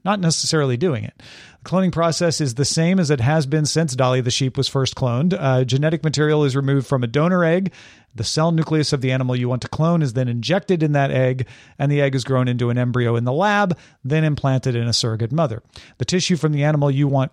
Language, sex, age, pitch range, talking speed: English, male, 40-59, 130-160 Hz, 240 wpm